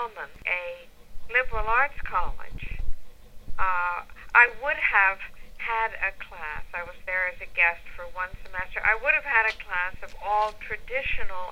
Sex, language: female, English